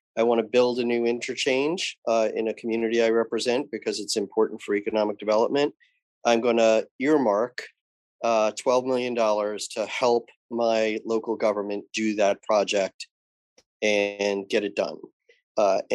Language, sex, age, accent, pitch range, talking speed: English, male, 30-49, American, 110-130 Hz, 145 wpm